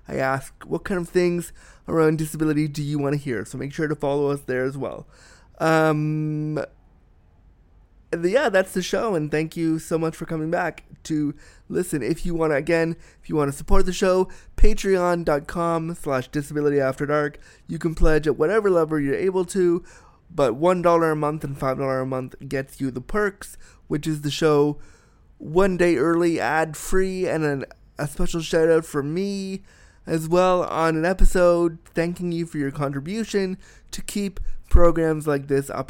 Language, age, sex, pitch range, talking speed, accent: English, 20-39, male, 145-175 Hz, 170 wpm, American